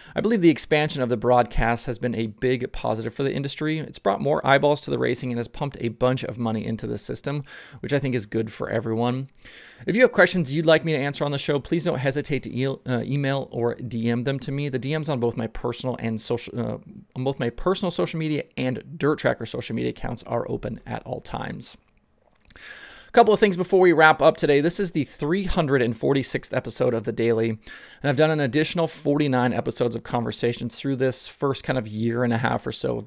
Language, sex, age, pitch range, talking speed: English, male, 30-49, 120-145 Hz, 230 wpm